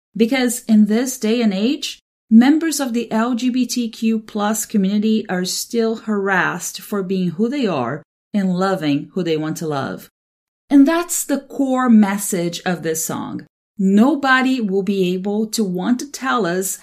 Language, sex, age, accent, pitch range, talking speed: English, female, 30-49, Brazilian, 190-250 Hz, 155 wpm